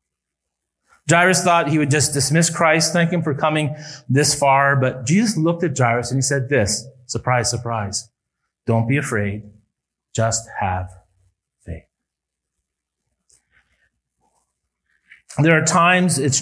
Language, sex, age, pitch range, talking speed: English, male, 30-49, 110-155 Hz, 125 wpm